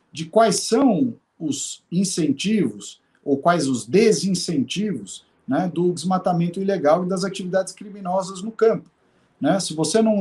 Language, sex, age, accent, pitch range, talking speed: Portuguese, male, 50-69, Brazilian, 150-195 Hz, 135 wpm